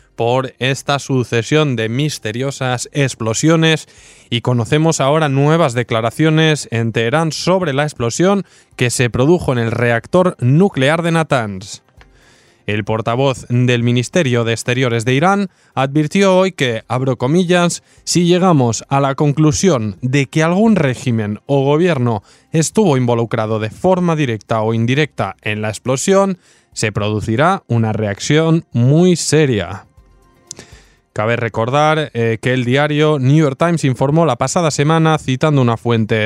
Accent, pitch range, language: Spanish, 115-160 Hz, Spanish